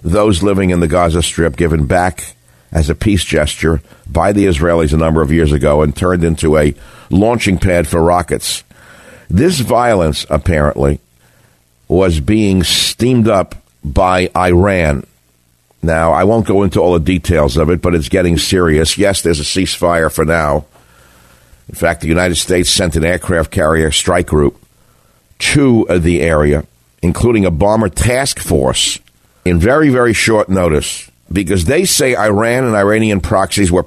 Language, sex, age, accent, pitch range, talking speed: English, male, 60-79, American, 75-100 Hz, 160 wpm